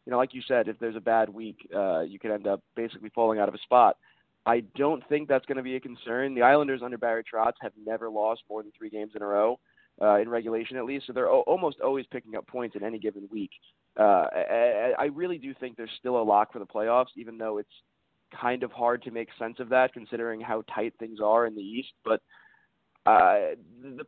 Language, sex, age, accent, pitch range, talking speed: English, male, 20-39, American, 110-135 Hz, 240 wpm